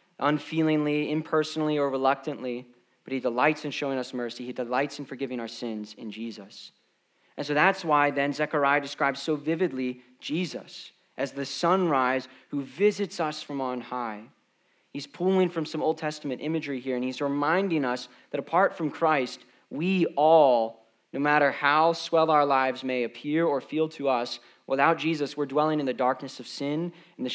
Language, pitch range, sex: English, 130-160 Hz, male